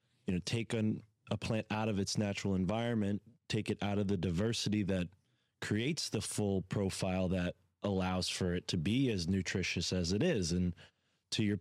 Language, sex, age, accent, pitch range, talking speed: English, male, 20-39, American, 95-120 Hz, 180 wpm